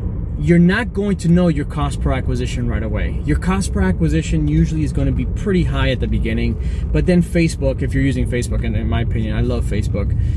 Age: 20-39